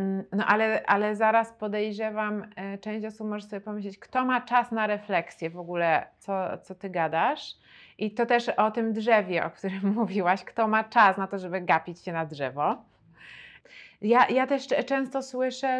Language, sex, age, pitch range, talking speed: Polish, female, 30-49, 200-240 Hz, 170 wpm